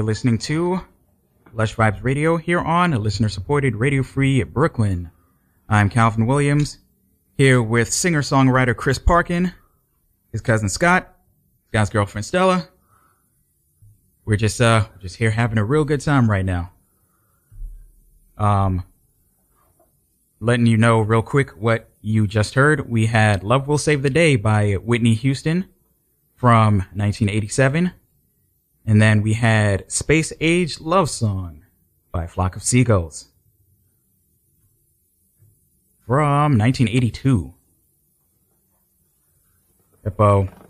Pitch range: 100-130 Hz